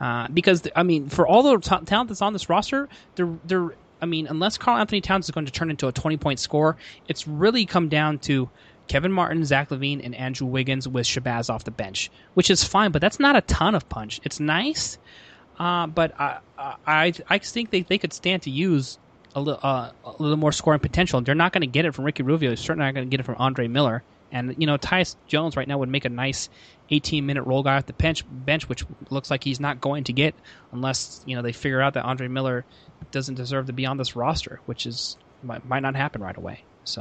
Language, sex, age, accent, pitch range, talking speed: English, male, 20-39, American, 130-165 Hz, 245 wpm